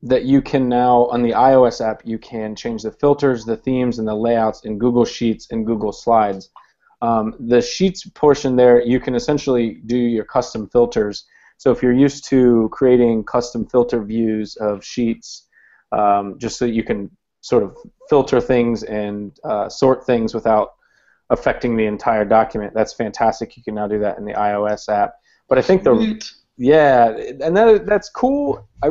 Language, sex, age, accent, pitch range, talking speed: English, male, 30-49, American, 110-135 Hz, 180 wpm